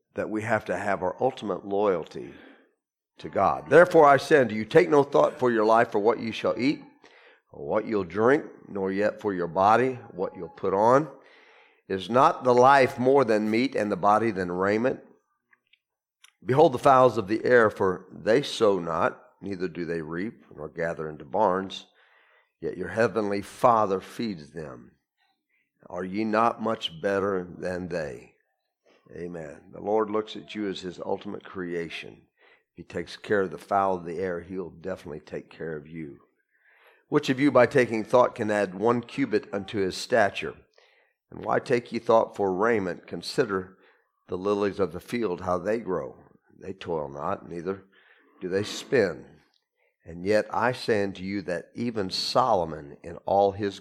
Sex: male